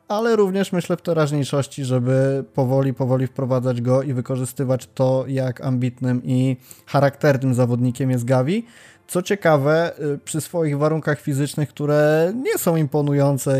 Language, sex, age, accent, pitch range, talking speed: Polish, male, 20-39, native, 125-140 Hz, 130 wpm